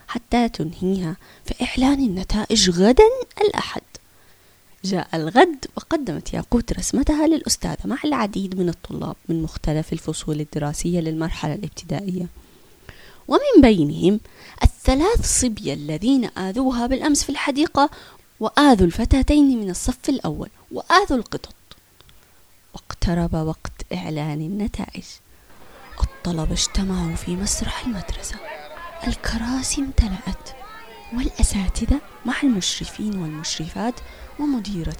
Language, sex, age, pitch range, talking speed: Arabic, female, 20-39, 180-270 Hz, 95 wpm